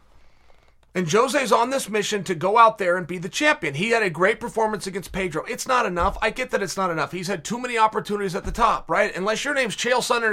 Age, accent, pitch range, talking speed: 30-49, American, 185-250 Hz, 250 wpm